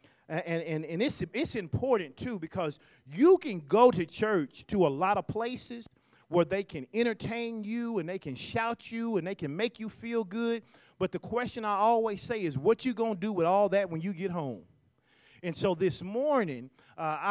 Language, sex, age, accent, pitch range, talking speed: English, male, 40-59, American, 150-215 Hz, 205 wpm